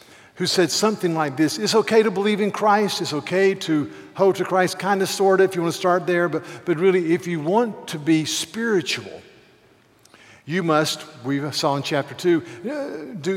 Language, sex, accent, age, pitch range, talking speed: English, male, American, 50-69, 145-185 Hz, 200 wpm